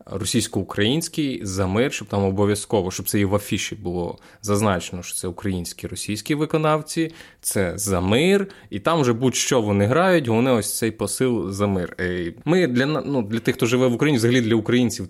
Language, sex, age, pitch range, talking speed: Ukrainian, male, 20-39, 105-130 Hz, 160 wpm